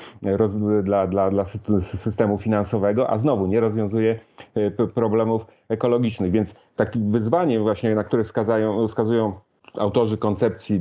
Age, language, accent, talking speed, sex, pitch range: 30-49, Polish, native, 110 wpm, male, 105-120 Hz